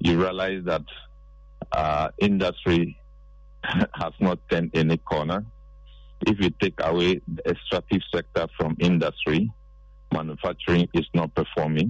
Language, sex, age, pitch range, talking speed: English, male, 50-69, 80-85 Hz, 115 wpm